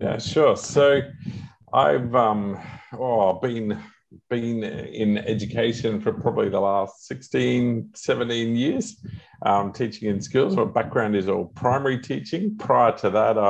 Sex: male